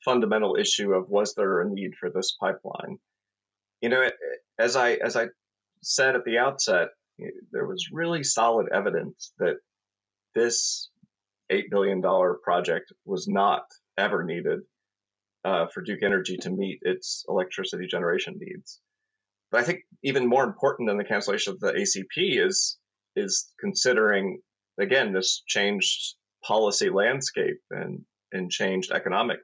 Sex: male